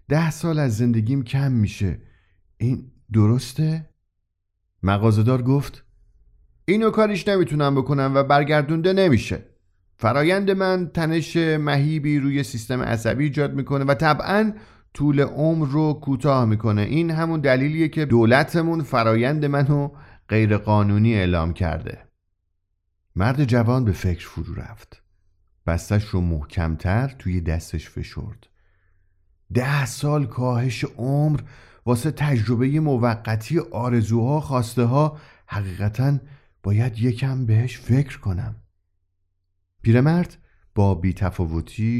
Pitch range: 90-140 Hz